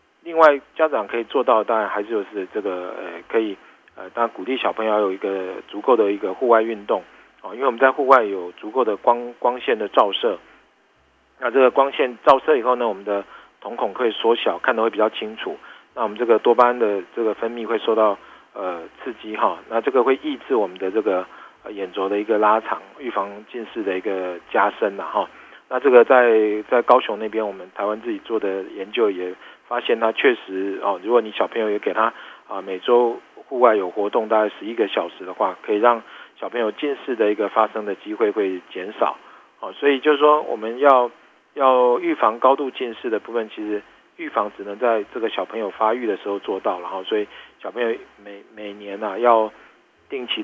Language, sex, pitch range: Chinese, male, 100-125 Hz